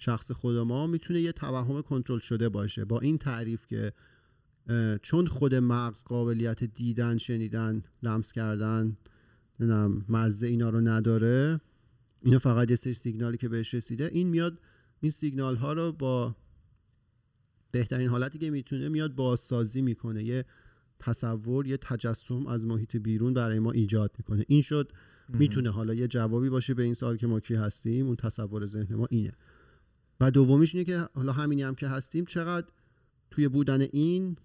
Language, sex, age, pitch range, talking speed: Persian, male, 40-59, 115-130 Hz, 160 wpm